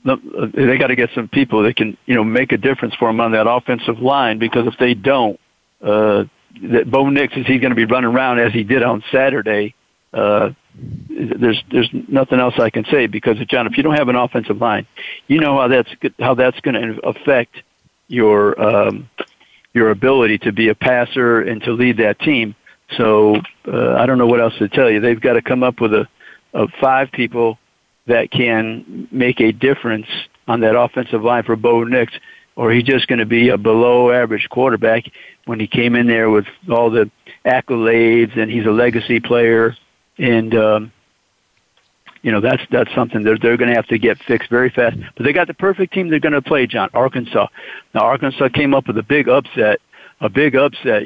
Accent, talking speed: American, 205 wpm